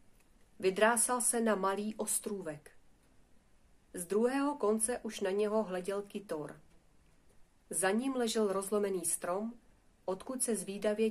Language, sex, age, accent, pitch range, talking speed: Czech, female, 40-59, native, 170-220 Hz, 115 wpm